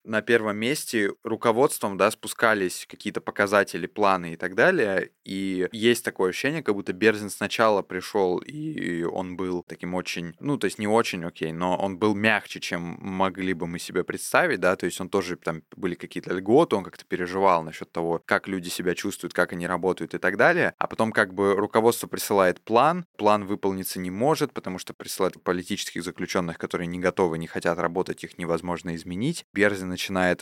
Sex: male